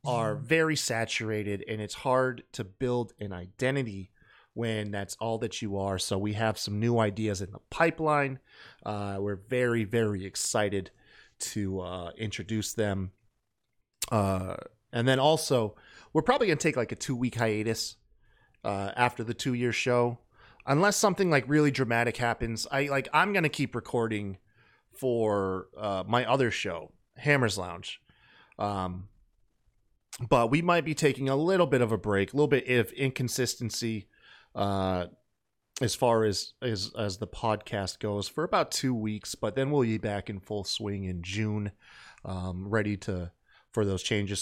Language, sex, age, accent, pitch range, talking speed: English, male, 30-49, American, 105-130 Hz, 160 wpm